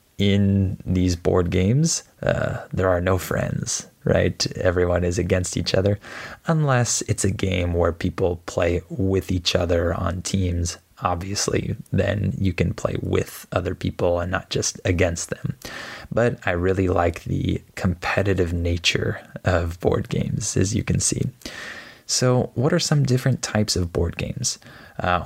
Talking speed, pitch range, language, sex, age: 150 wpm, 90-100 Hz, Spanish, male, 20-39